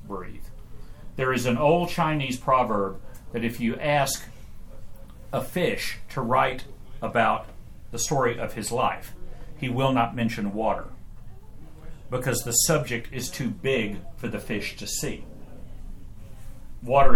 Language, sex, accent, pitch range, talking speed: English, male, American, 105-130 Hz, 135 wpm